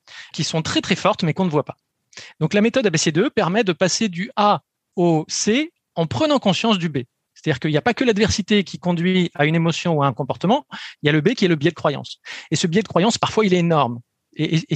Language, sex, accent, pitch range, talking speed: French, male, French, 150-195 Hz, 260 wpm